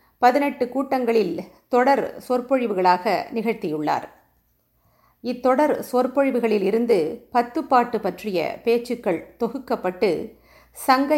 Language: Tamil